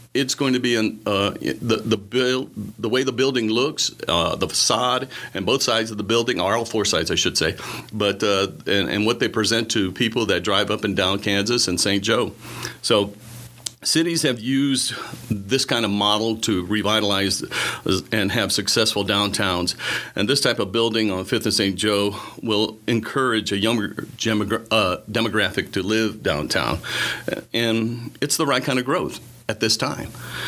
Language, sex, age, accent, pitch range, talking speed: English, male, 40-59, American, 100-120 Hz, 180 wpm